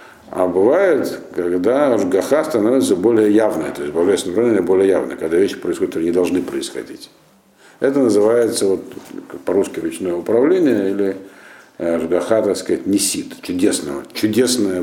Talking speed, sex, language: 135 wpm, male, Russian